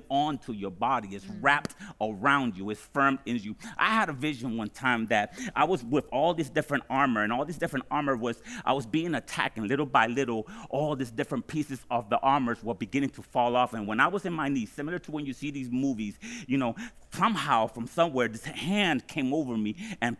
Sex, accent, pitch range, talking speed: male, American, 125-175 Hz, 225 wpm